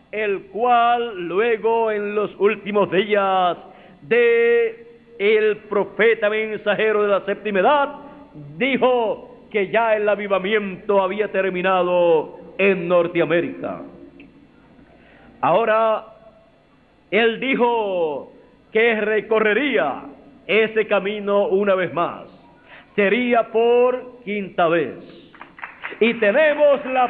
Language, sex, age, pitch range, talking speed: Spanish, male, 50-69, 205-255 Hz, 90 wpm